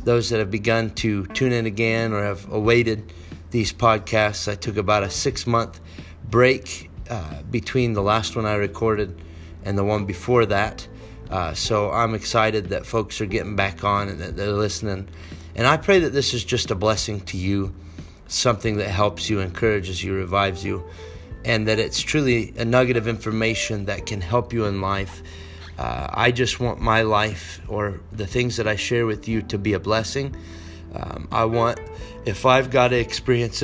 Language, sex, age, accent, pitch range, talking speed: English, male, 30-49, American, 95-115 Hz, 185 wpm